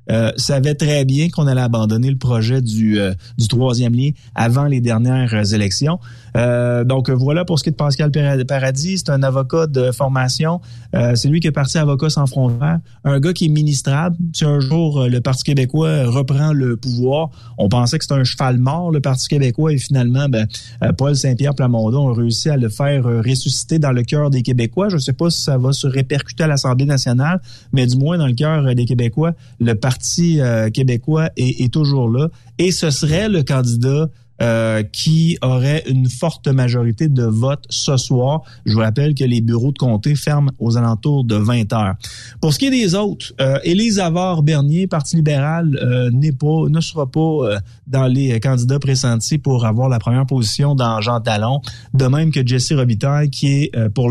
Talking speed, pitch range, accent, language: 200 wpm, 120-150 Hz, Canadian, French